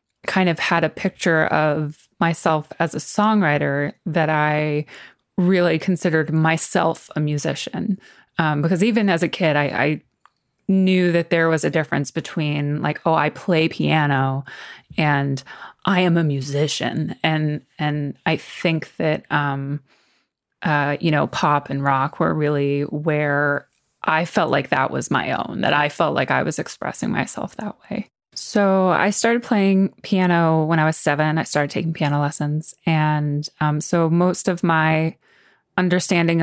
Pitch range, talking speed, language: 150-180 Hz, 155 wpm, English